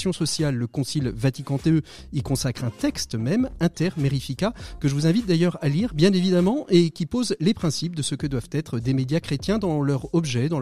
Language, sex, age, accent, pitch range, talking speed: French, male, 40-59, French, 135-180 Hz, 215 wpm